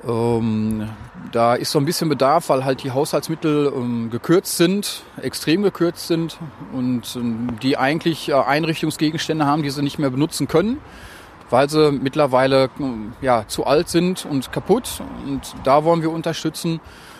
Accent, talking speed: German, 140 wpm